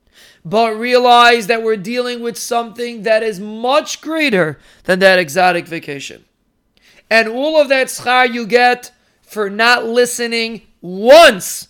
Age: 40-59